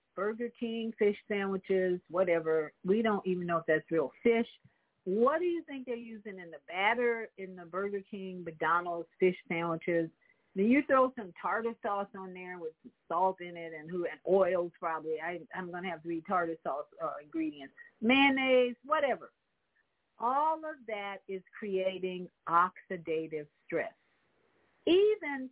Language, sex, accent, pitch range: English, female, American, 180-245 Hz